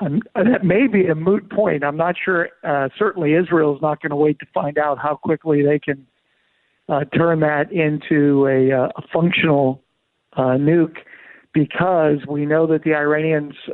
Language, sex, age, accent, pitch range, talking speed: English, male, 60-79, American, 145-170 Hz, 170 wpm